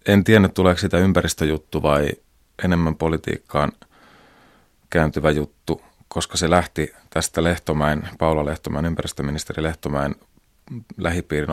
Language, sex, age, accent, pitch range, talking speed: Finnish, male, 30-49, native, 75-90 Hz, 105 wpm